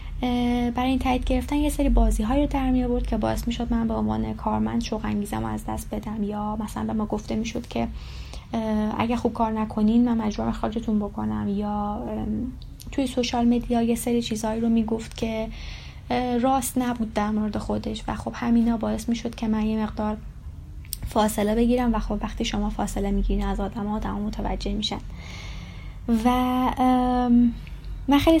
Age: 10-29